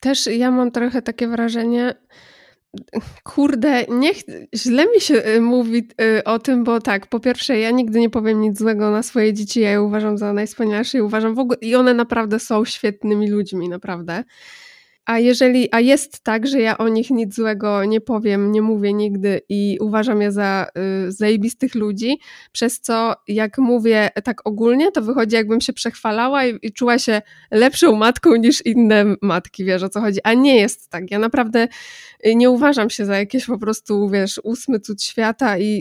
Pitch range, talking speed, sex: 210-245 Hz, 180 wpm, female